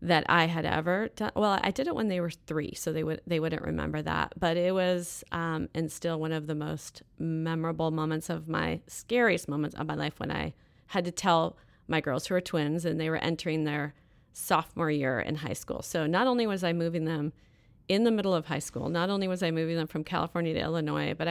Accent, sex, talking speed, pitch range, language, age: American, female, 240 wpm, 155-185 Hz, English, 30-49